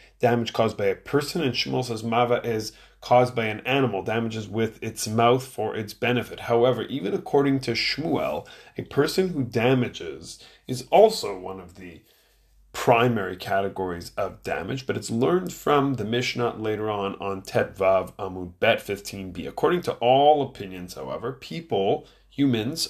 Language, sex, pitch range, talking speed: English, male, 105-130 Hz, 155 wpm